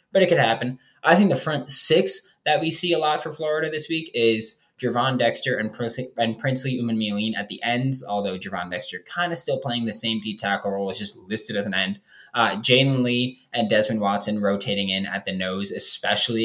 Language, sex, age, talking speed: English, male, 10-29, 210 wpm